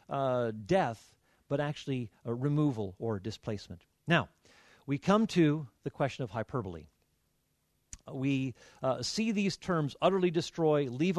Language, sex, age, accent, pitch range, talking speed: Danish, male, 50-69, American, 125-185 Hz, 140 wpm